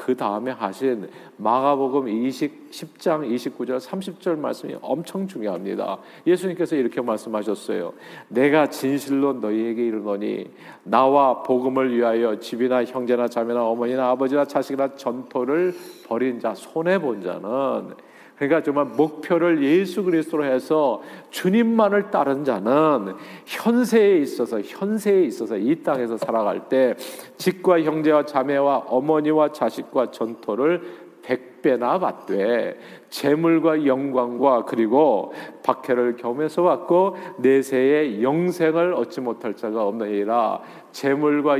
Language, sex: Korean, male